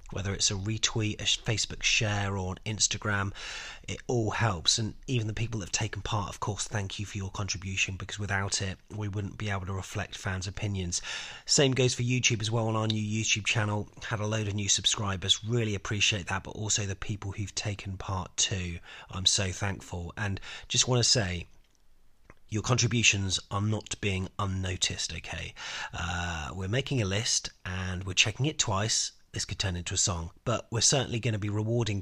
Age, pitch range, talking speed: 30-49, 95-115 Hz, 195 wpm